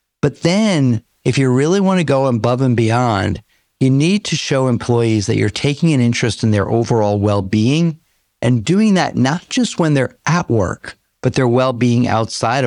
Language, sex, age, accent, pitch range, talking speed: English, male, 50-69, American, 110-150 Hz, 180 wpm